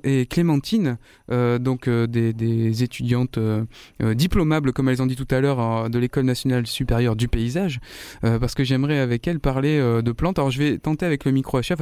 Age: 20-39